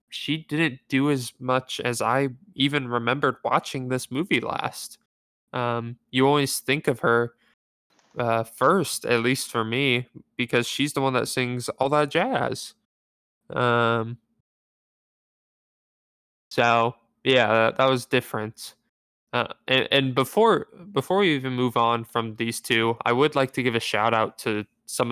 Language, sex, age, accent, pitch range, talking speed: English, male, 10-29, American, 110-130 Hz, 150 wpm